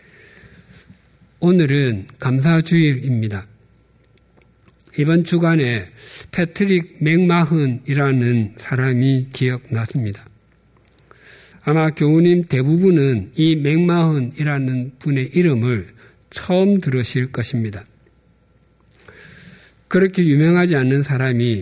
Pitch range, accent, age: 120-165 Hz, native, 50-69